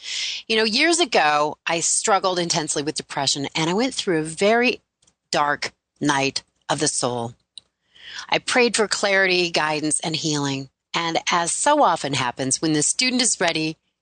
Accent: American